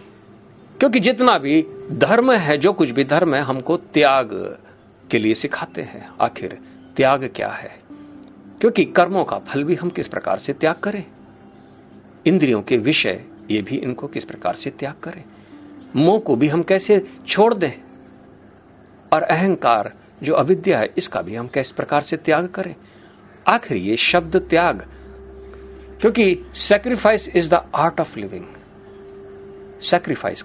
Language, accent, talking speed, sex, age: Hindi, native, 145 wpm, male, 50-69